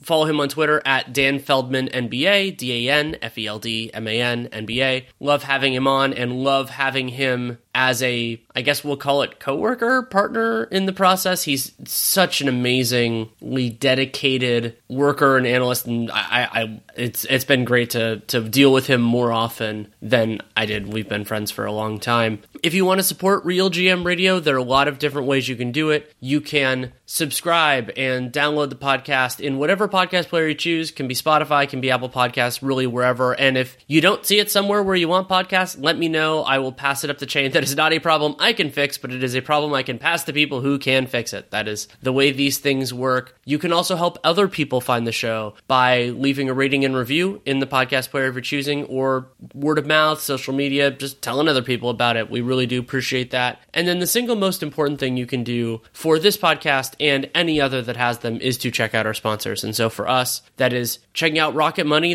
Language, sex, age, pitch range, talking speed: English, male, 30-49, 125-150 Hz, 230 wpm